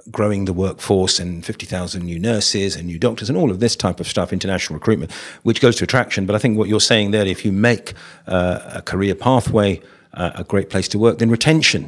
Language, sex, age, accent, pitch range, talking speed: English, male, 50-69, British, 95-115 Hz, 225 wpm